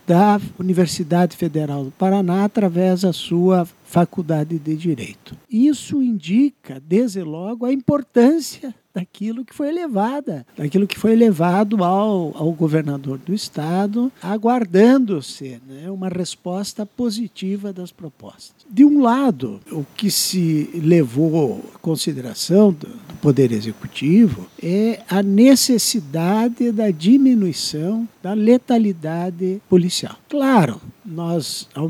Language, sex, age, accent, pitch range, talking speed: Portuguese, male, 60-79, Brazilian, 165-225 Hz, 110 wpm